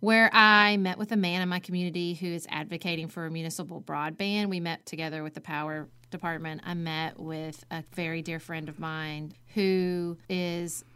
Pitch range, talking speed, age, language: 170-220 Hz, 185 wpm, 30-49, English